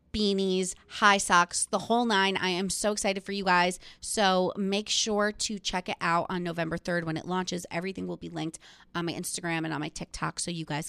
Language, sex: English, female